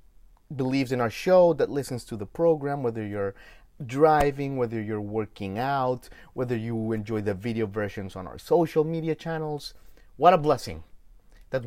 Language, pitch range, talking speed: English, 100-135 Hz, 160 wpm